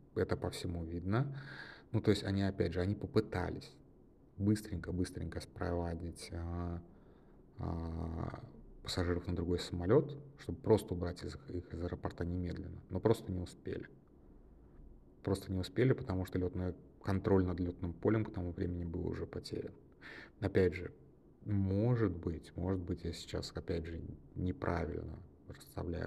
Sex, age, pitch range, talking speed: male, 30-49, 85-95 Hz, 140 wpm